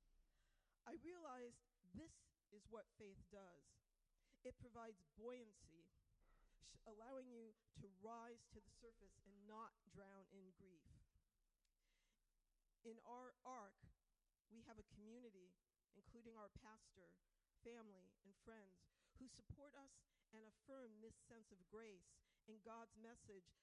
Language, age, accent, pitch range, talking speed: English, 50-69, American, 200-235 Hz, 120 wpm